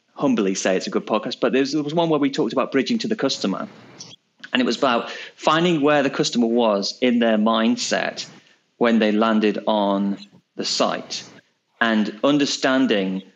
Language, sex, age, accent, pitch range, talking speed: English, male, 30-49, British, 105-145 Hz, 170 wpm